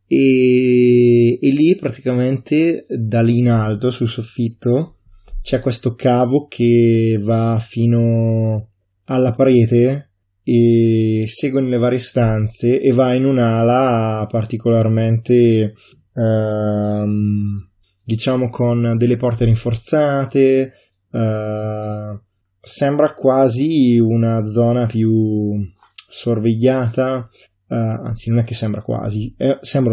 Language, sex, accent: Italian, male, native